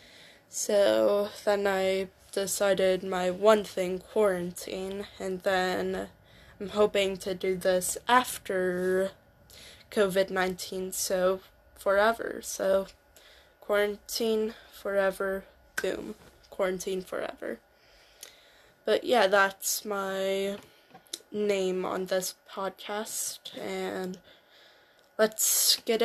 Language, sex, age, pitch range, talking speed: English, female, 10-29, 190-210 Hz, 85 wpm